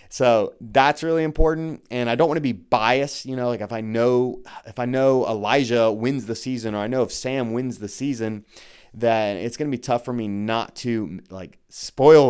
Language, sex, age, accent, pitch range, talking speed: English, male, 30-49, American, 110-135 Hz, 215 wpm